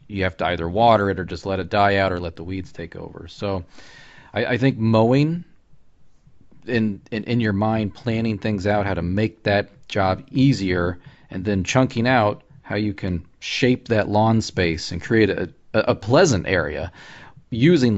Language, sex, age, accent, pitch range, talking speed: English, male, 40-59, American, 95-115 Hz, 185 wpm